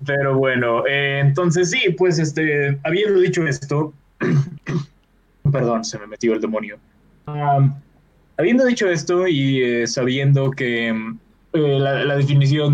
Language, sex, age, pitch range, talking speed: Spanish, male, 20-39, 125-160 Hz, 130 wpm